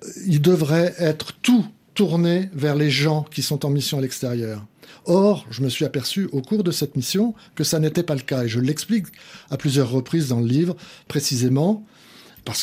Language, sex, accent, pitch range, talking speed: French, male, French, 125-170 Hz, 195 wpm